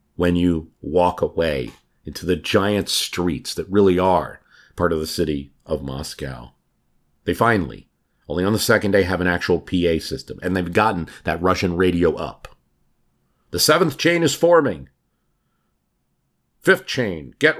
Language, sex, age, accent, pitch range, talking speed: English, male, 50-69, American, 80-115 Hz, 150 wpm